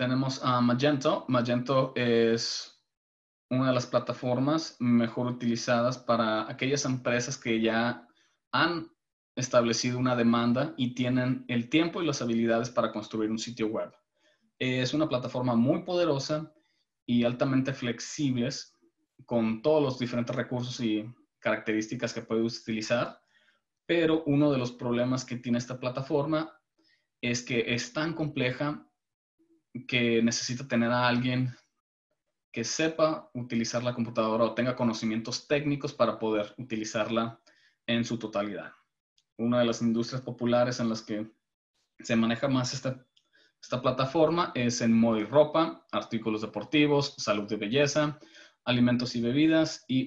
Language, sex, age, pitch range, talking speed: English, male, 20-39, 115-135 Hz, 135 wpm